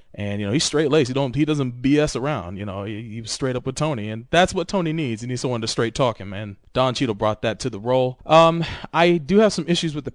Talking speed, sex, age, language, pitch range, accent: 285 wpm, male, 30-49, English, 100-145 Hz, American